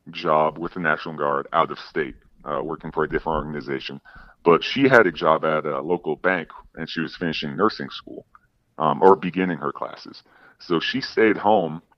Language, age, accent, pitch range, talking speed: English, 30-49, American, 75-90 Hz, 190 wpm